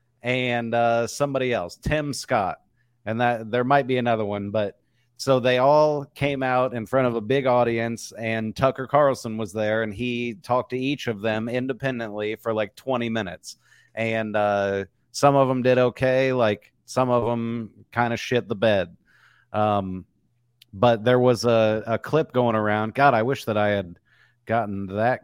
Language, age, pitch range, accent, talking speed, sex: English, 40-59, 110-130 Hz, American, 180 wpm, male